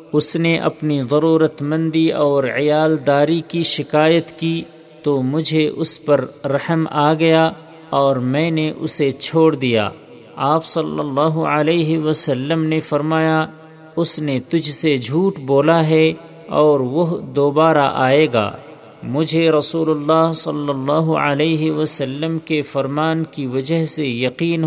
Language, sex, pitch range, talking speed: Urdu, male, 140-160 Hz, 135 wpm